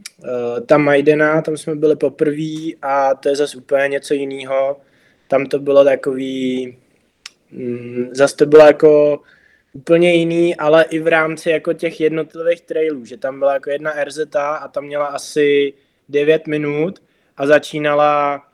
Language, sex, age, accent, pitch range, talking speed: Czech, male, 20-39, native, 135-155 Hz, 150 wpm